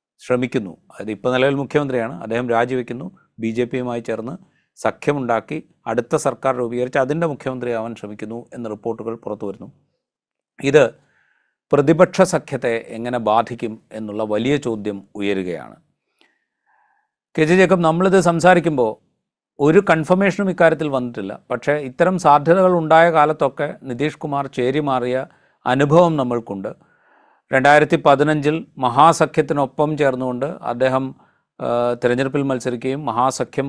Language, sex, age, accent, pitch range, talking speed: Malayalam, male, 40-59, native, 120-150 Hz, 100 wpm